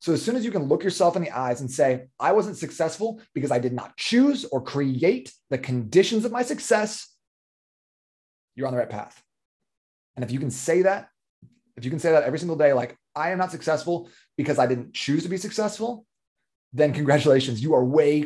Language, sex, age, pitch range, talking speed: English, male, 30-49, 130-185 Hz, 210 wpm